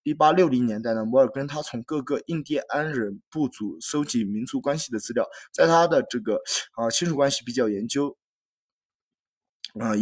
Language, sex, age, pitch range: Chinese, male, 20-39, 120-160 Hz